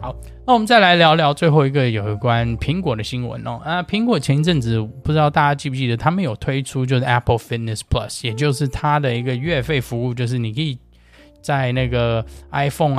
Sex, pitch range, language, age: male, 110-145 Hz, Chinese, 20-39